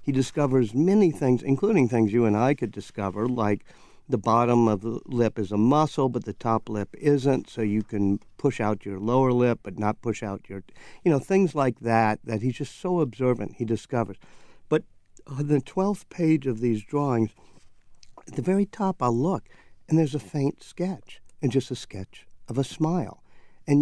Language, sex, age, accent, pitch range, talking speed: English, male, 50-69, American, 110-145 Hz, 195 wpm